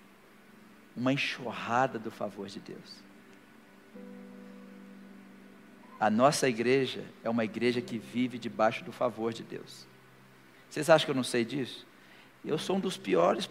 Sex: male